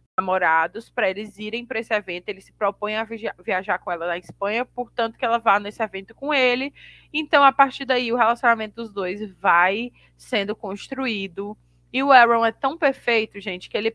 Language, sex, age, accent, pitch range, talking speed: Portuguese, female, 20-39, Brazilian, 185-230 Hz, 190 wpm